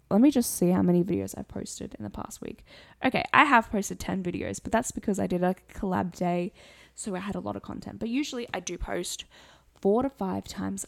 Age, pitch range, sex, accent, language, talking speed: 10-29, 170-205 Hz, female, Australian, English, 235 wpm